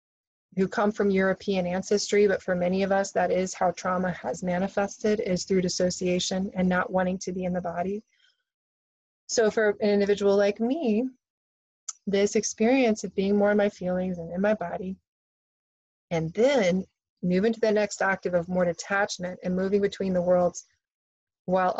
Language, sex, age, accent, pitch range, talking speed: English, female, 30-49, American, 180-210 Hz, 170 wpm